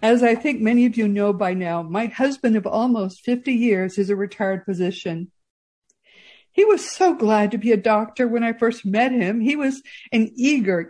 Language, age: English, 60-79